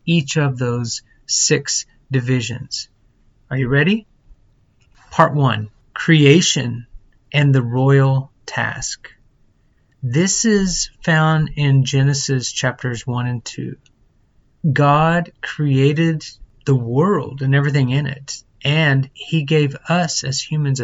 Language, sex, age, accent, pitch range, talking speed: English, male, 30-49, American, 125-150 Hz, 110 wpm